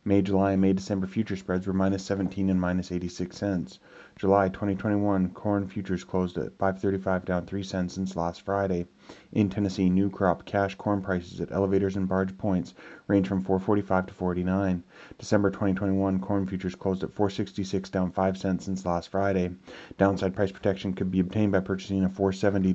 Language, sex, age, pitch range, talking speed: English, male, 30-49, 95-100 Hz, 175 wpm